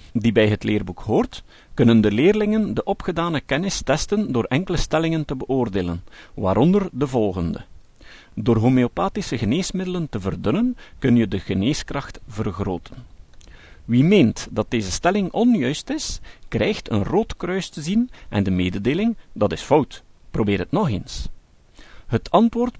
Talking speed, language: 145 wpm, Dutch